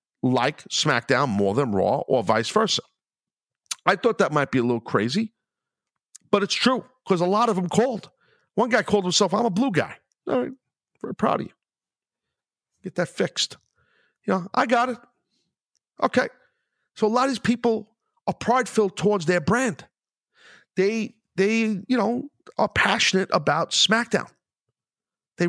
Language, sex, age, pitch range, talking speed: English, male, 50-69, 175-235 Hz, 160 wpm